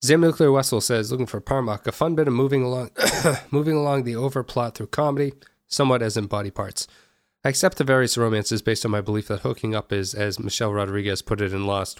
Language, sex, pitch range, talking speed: English, male, 105-130 Hz, 215 wpm